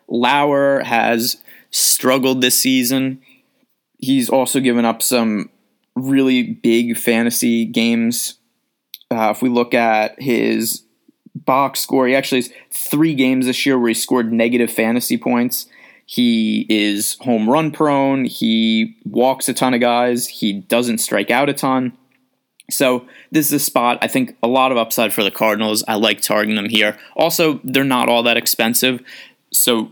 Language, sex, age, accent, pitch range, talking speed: English, male, 20-39, American, 115-135 Hz, 155 wpm